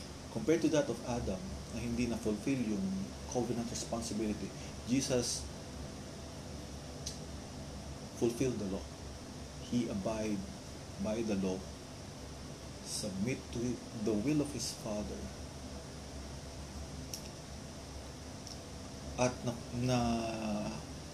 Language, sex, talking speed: Filipino, male, 85 wpm